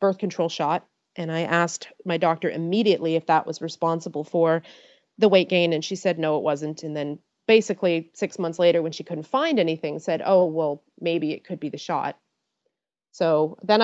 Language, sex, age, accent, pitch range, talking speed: English, female, 30-49, American, 165-200 Hz, 195 wpm